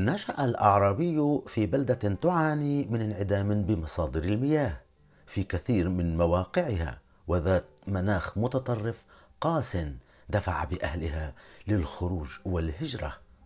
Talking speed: 95 wpm